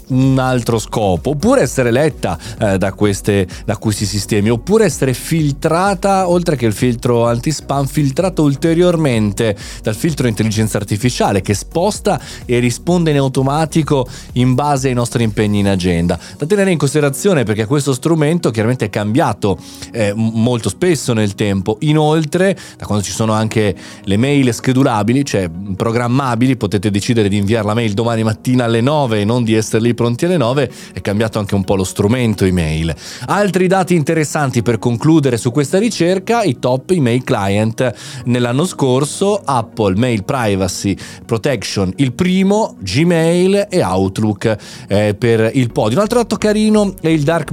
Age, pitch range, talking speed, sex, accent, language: 30-49, 105-150 Hz, 155 wpm, male, native, Italian